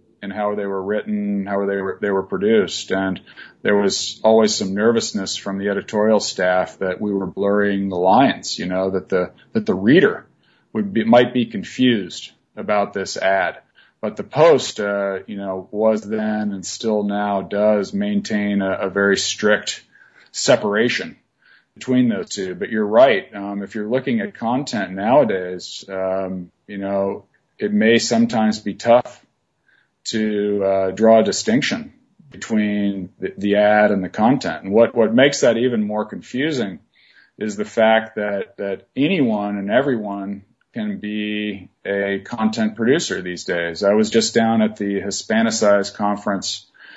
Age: 40-59